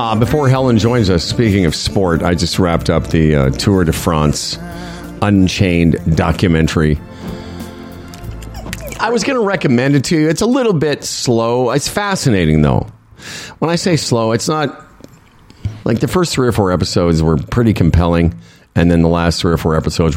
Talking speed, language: 175 wpm, English